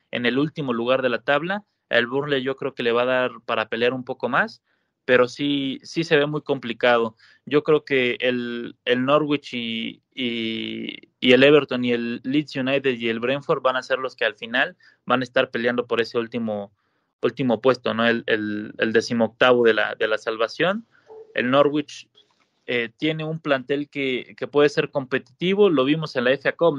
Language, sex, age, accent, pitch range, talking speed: Spanish, male, 20-39, Mexican, 120-150 Hz, 200 wpm